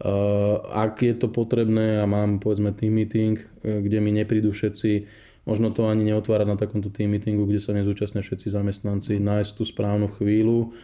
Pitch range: 100-110 Hz